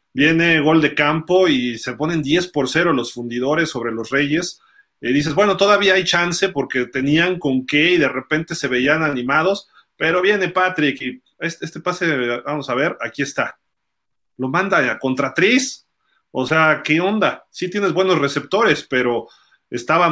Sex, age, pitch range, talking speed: male, 40-59, 130-170 Hz, 170 wpm